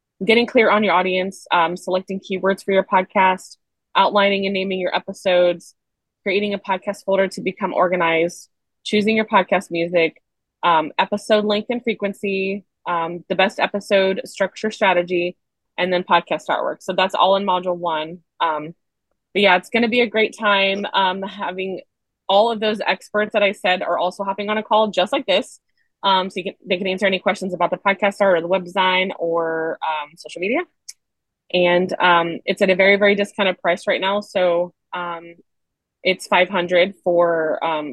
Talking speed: 180 wpm